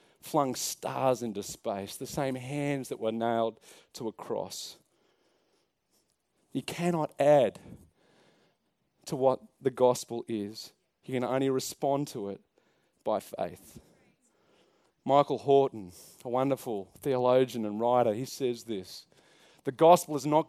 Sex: male